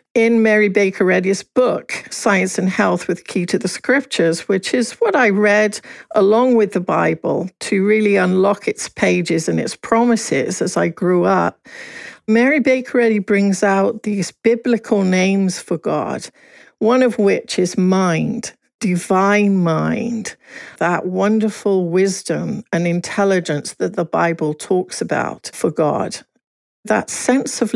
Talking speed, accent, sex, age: 145 wpm, British, female, 60-79